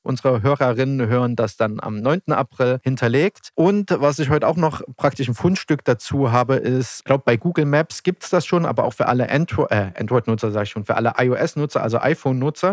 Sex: male